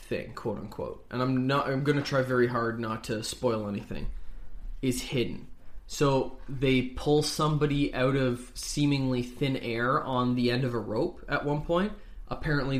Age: 20-39